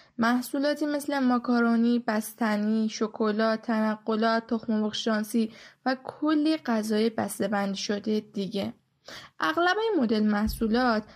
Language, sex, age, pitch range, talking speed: Persian, female, 10-29, 220-275 Hz, 100 wpm